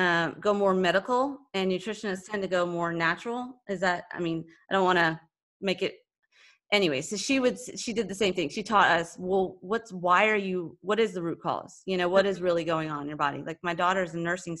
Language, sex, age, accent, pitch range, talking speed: English, female, 30-49, American, 170-200 Hz, 240 wpm